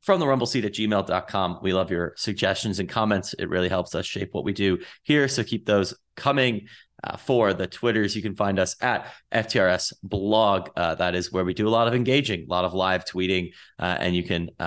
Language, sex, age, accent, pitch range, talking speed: English, male, 30-49, American, 90-115 Hz, 225 wpm